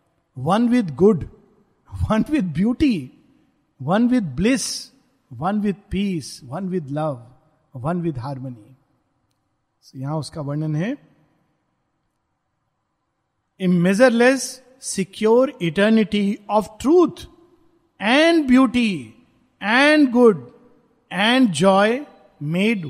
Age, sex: 50-69, male